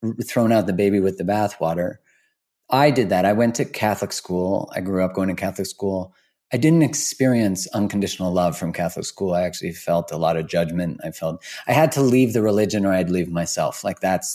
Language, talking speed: English, 215 wpm